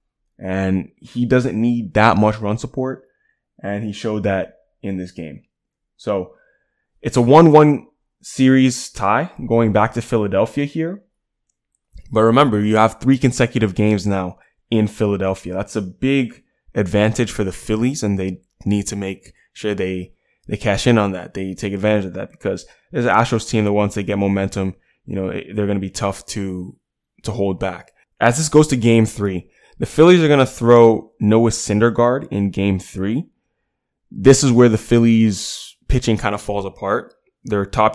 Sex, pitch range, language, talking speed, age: male, 100-120 Hz, English, 175 wpm, 20-39